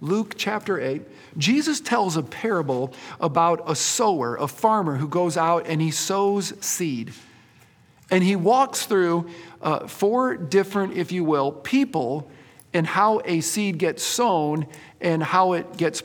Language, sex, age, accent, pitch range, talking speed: English, male, 50-69, American, 155-205 Hz, 150 wpm